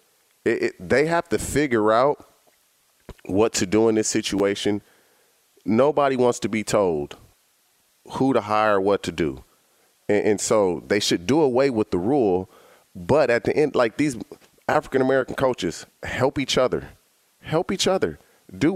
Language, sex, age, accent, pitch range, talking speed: English, male, 40-59, American, 125-160 Hz, 155 wpm